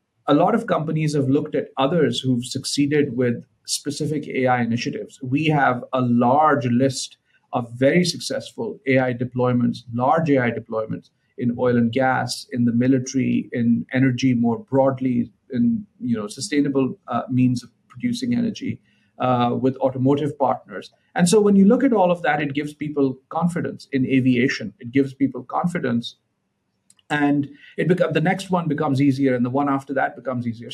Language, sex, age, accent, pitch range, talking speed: English, male, 50-69, Indian, 125-150 Hz, 165 wpm